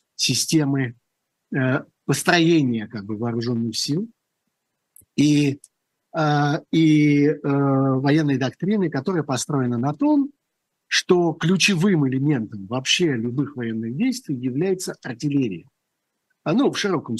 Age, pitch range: 50-69, 125-175 Hz